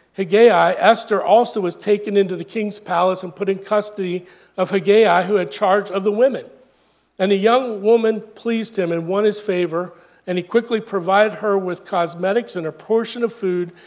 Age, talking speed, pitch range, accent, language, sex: 40-59, 185 wpm, 175-205 Hz, American, English, male